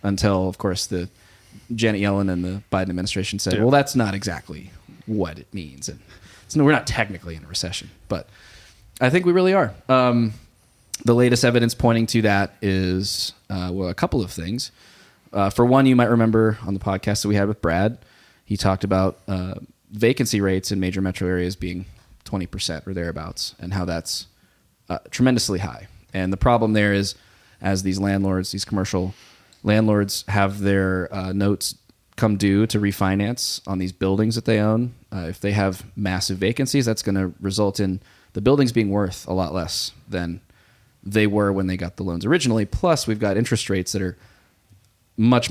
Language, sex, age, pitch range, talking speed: English, male, 20-39, 95-110 Hz, 185 wpm